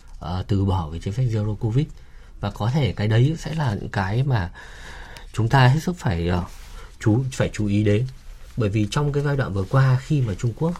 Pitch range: 90-130 Hz